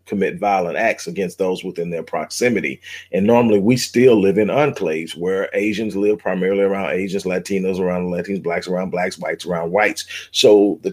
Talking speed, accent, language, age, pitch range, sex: 175 wpm, American, English, 40-59, 90-105 Hz, male